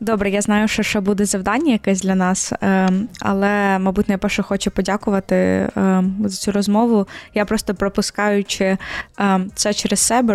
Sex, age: female, 20-39